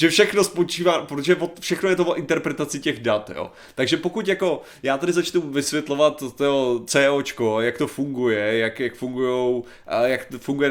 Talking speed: 165 wpm